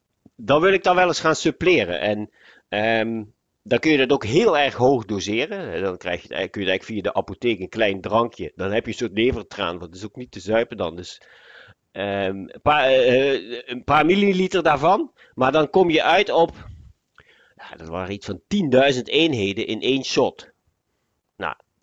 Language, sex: Dutch, male